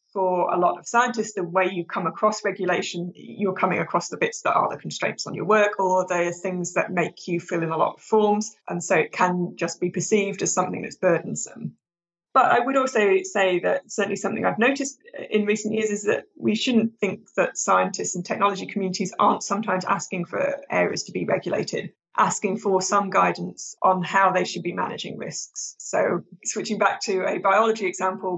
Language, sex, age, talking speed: English, female, 20-39, 200 wpm